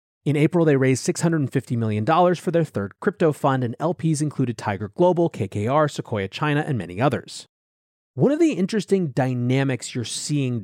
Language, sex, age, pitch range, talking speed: English, male, 30-49, 115-155 Hz, 165 wpm